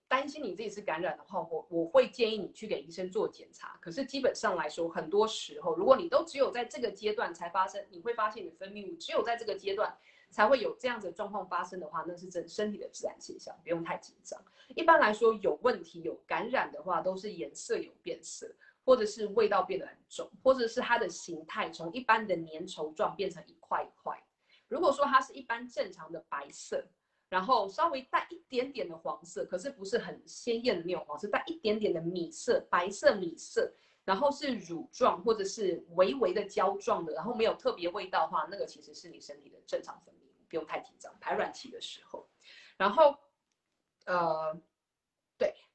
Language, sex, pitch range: Chinese, female, 185-280 Hz